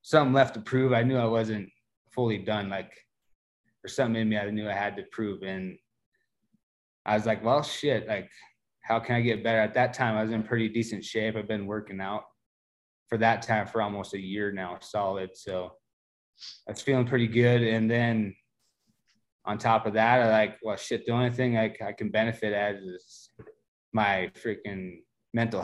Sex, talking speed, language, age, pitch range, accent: male, 195 wpm, English, 20-39, 105-125 Hz, American